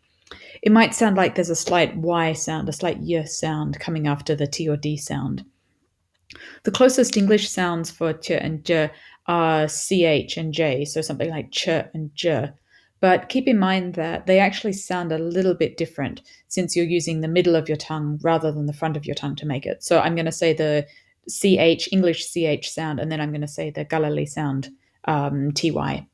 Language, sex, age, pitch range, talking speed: English, female, 30-49, 145-175 Hz, 205 wpm